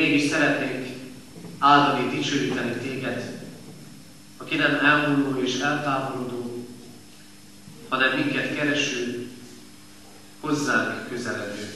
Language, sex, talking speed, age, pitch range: Hungarian, male, 75 wpm, 40-59, 100-135 Hz